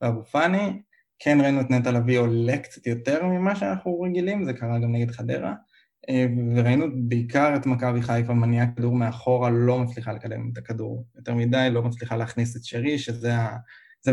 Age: 20-39